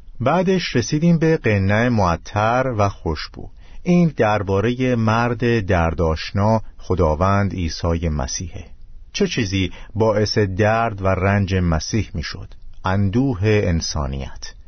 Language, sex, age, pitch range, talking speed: Persian, male, 50-69, 90-120 Hz, 100 wpm